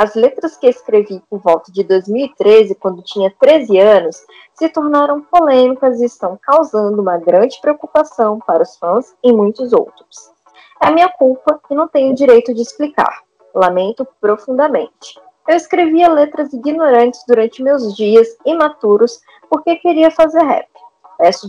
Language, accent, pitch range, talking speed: Portuguese, Brazilian, 215-300 Hz, 140 wpm